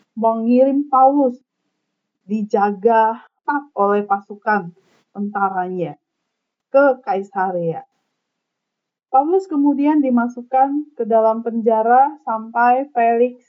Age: 30-49